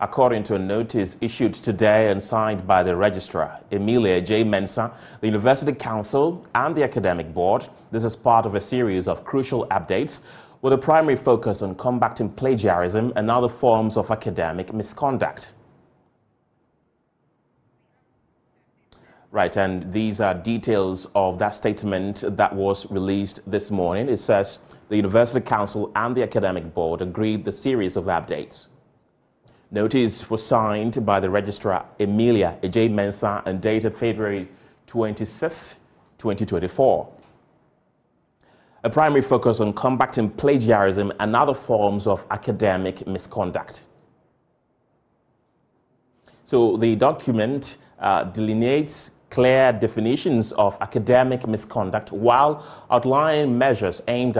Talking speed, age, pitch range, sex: 120 wpm, 30-49, 100-125 Hz, male